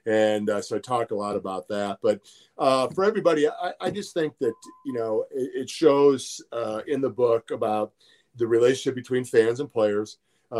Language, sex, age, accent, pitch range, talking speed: English, male, 40-59, American, 105-140 Hz, 200 wpm